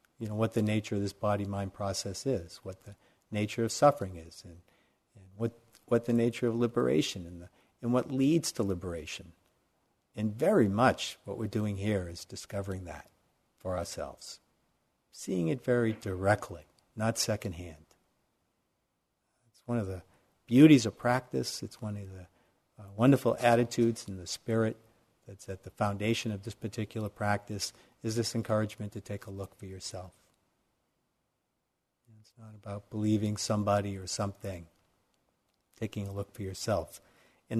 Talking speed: 155 wpm